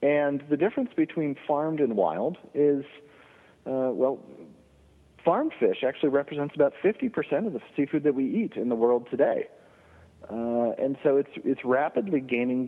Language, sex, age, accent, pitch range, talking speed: English, male, 40-59, American, 110-160 Hz, 155 wpm